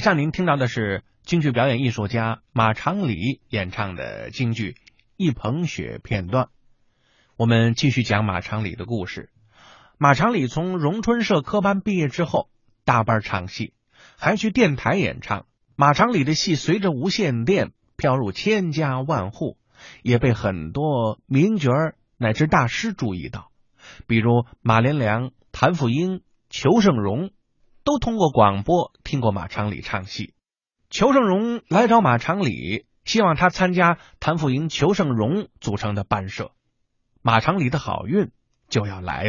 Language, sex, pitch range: Chinese, male, 110-180 Hz